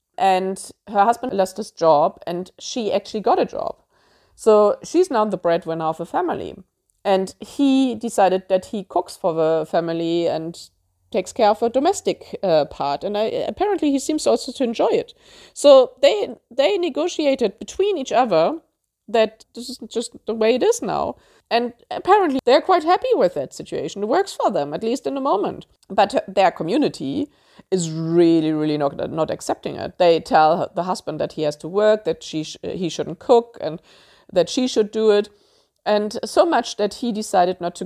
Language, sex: English, female